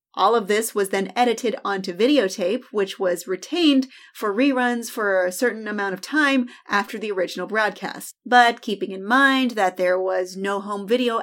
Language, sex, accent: English, female, American